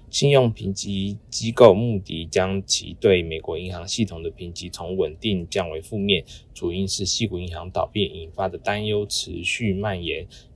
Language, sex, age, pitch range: Chinese, male, 20-39, 90-110 Hz